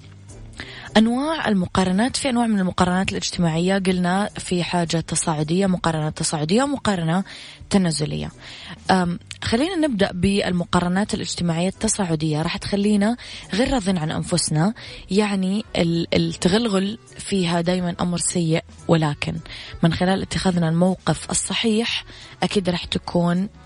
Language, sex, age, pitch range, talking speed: English, female, 20-39, 160-200 Hz, 105 wpm